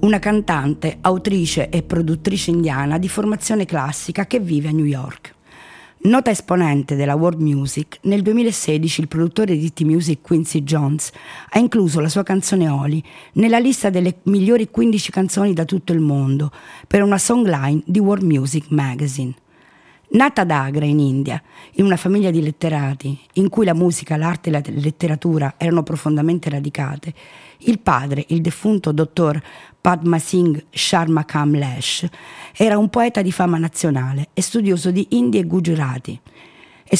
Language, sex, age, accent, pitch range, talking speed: Italian, female, 50-69, native, 150-195 Hz, 150 wpm